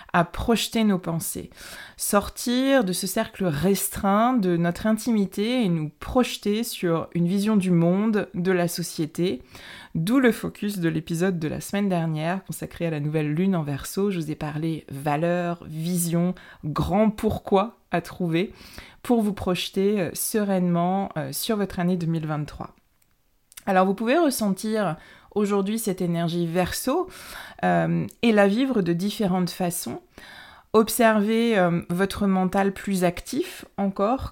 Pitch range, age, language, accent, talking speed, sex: 170-215 Hz, 20-39, French, French, 140 wpm, female